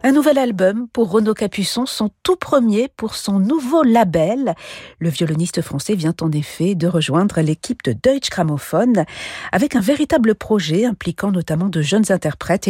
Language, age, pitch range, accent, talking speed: French, 50-69, 155-225 Hz, French, 160 wpm